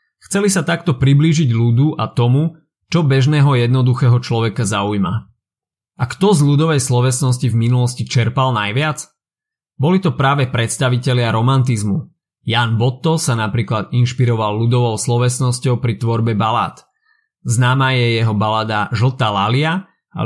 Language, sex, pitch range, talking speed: Slovak, male, 115-145 Hz, 125 wpm